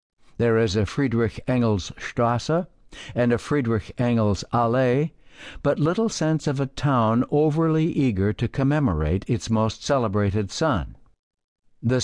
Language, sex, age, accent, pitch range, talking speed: English, male, 60-79, American, 105-140 Hz, 110 wpm